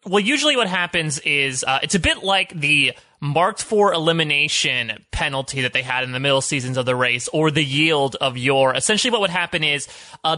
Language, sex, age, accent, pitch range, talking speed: English, male, 30-49, American, 140-190 Hz, 195 wpm